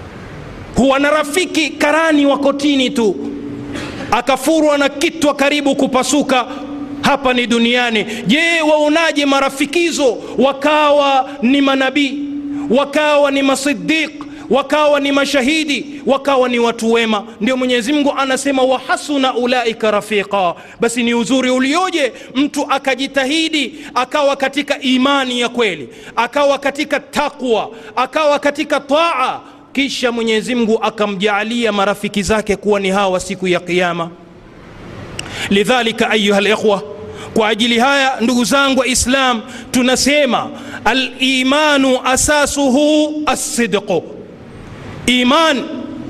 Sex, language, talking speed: male, Swahili, 110 wpm